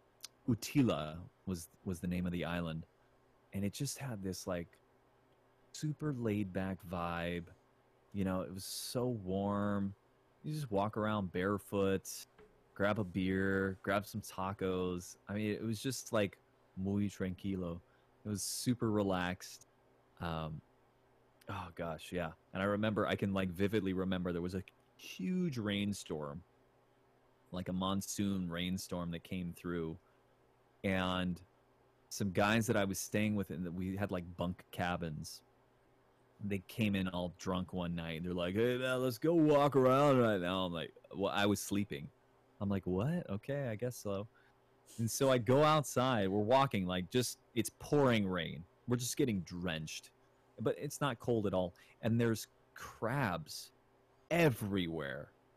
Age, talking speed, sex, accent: 30-49, 150 wpm, male, American